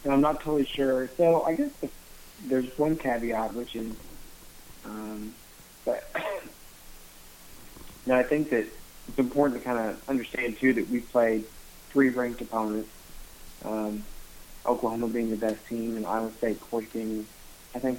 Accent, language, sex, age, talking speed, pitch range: American, English, male, 30-49, 145 wpm, 110-125 Hz